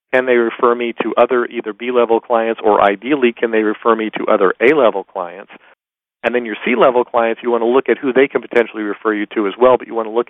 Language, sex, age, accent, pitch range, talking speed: English, male, 40-59, American, 105-120 Hz, 270 wpm